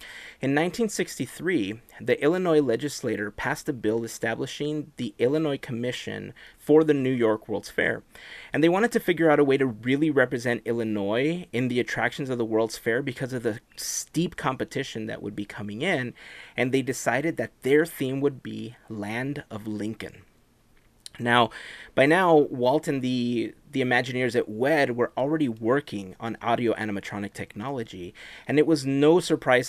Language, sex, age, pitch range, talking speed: English, male, 30-49, 110-145 Hz, 160 wpm